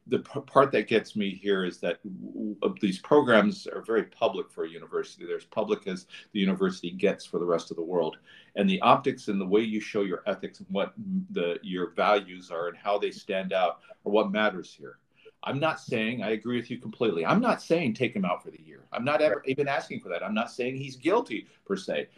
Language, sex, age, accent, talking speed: English, male, 50-69, American, 230 wpm